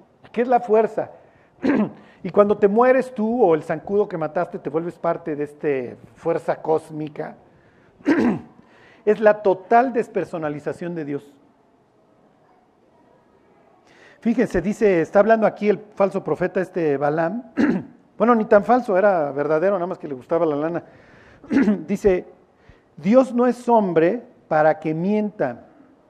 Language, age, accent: Spanish, 40-59, Mexican